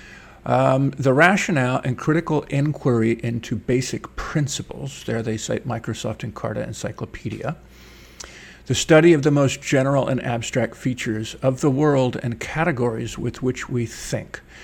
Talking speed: 135 wpm